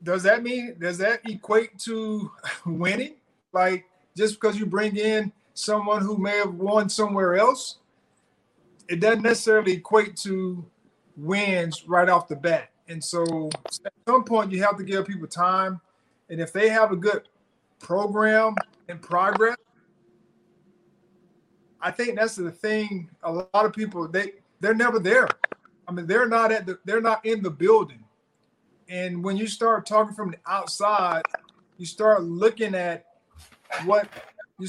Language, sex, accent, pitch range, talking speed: English, male, American, 185-225 Hz, 155 wpm